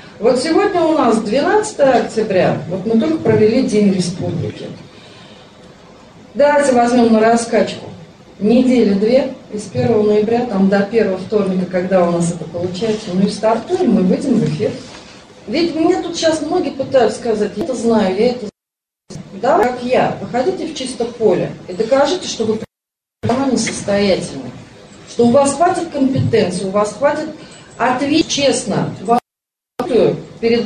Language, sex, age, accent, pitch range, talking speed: Russian, female, 30-49, native, 210-290 Hz, 145 wpm